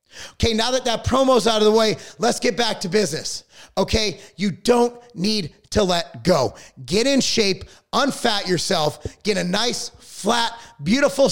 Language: English